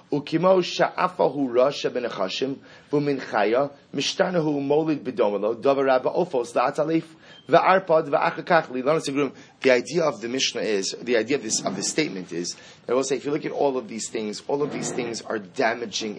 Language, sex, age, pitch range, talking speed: English, male, 30-49, 125-145 Hz, 120 wpm